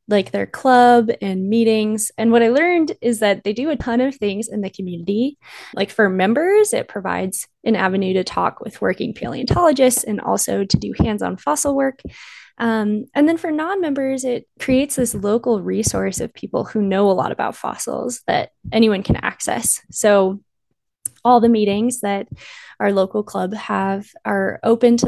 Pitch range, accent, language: 200-250 Hz, American, English